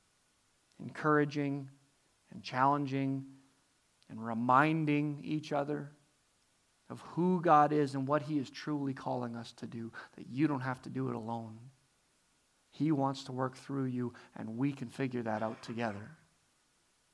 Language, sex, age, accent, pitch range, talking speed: English, male, 40-59, American, 135-155 Hz, 145 wpm